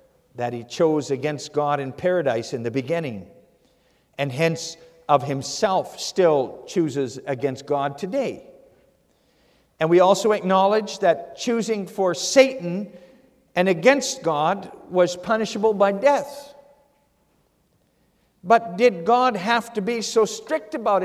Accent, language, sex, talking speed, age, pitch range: American, English, male, 125 wpm, 50-69, 140-235 Hz